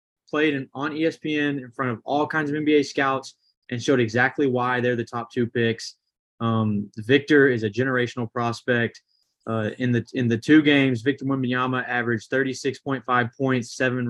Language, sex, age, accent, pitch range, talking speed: English, male, 20-39, American, 120-140 Hz, 170 wpm